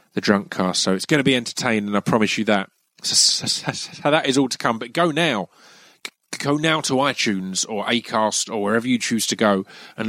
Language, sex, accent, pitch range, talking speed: English, male, British, 100-130 Hz, 225 wpm